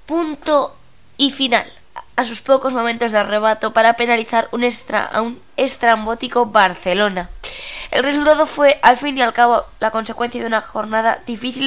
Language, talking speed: Spanish, 160 wpm